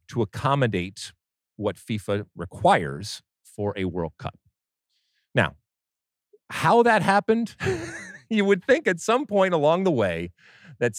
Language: English